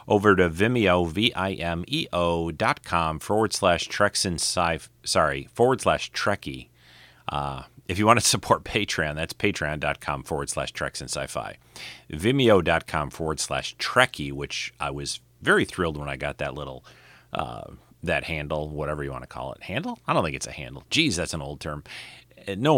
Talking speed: 170 wpm